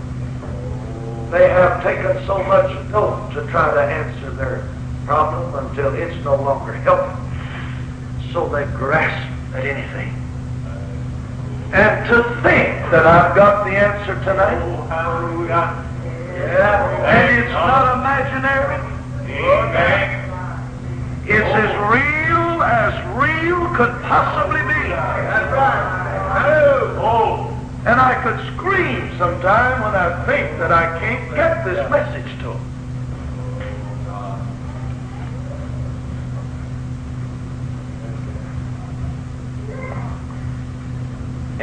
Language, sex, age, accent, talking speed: English, male, 60-79, American, 90 wpm